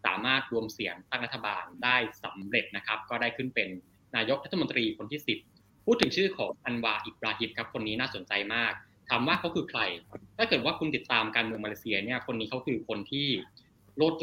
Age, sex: 20-39, male